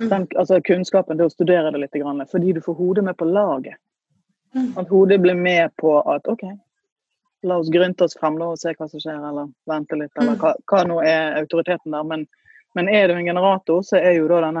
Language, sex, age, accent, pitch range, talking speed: English, female, 30-49, Swedish, 160-205 Hz, 220 wpm